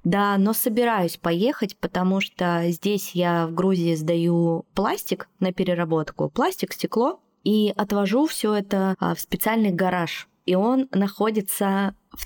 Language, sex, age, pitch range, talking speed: Russian, female, 20-39, 170-215 Hz, 130 wpm